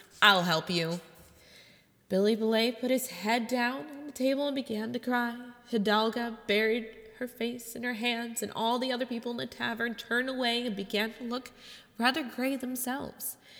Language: English